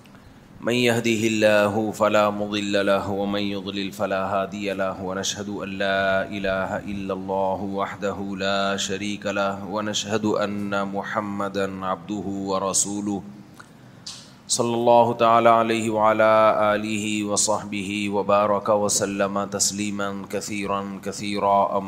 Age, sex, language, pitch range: 30-49, male, Urdu, 95-105 Hz